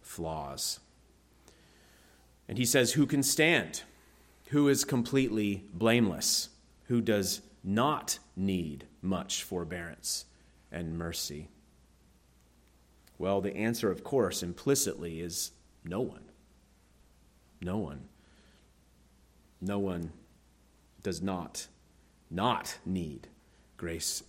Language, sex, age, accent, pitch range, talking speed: English, male, 30-49, American, 70-115 Hz, 90 wpm